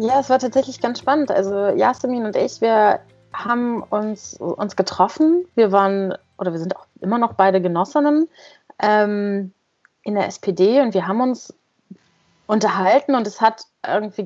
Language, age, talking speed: German, 30-49, 160 wpm